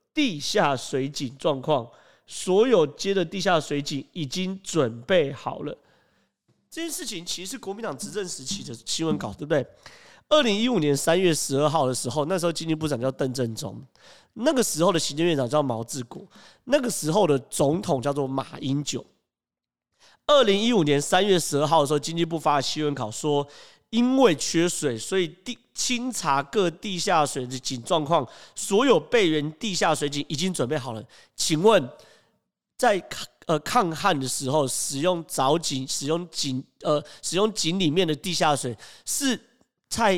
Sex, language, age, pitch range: male, Chinese, 30-49, 140-185 Hz